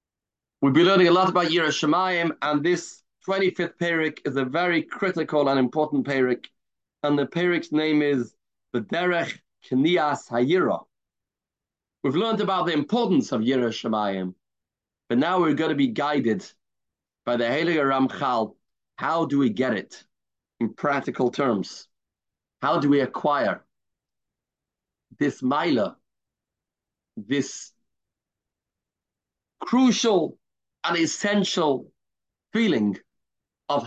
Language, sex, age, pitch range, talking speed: English, male, 40-59, 145-180 Hz, 115 wpm